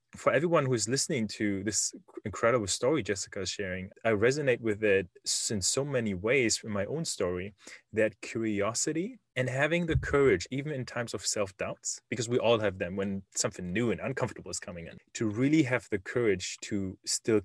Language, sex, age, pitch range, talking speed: English, male, 20-39, 100-130 Hz, 190 wpm